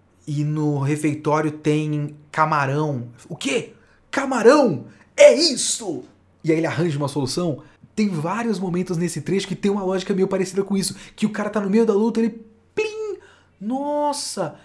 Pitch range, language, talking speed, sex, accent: 145-215 Hz, Portuguese, 165 wpm, male, Brazilian